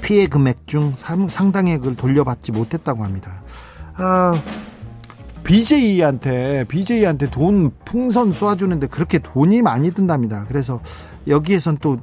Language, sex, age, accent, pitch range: Korean, male, 40-59, native, 130-195 Hz